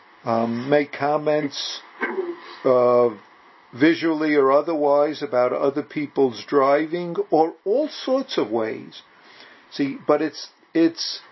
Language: English